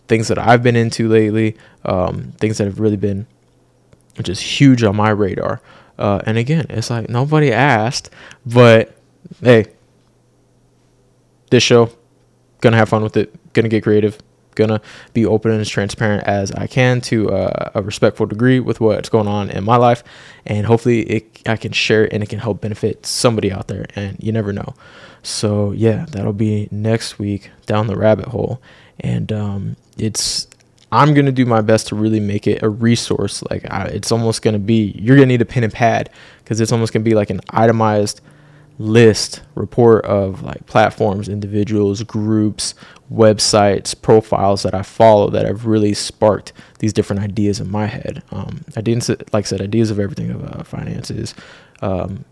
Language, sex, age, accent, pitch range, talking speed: English, male, 20-39, American, 105-120 Hz, 180 wpm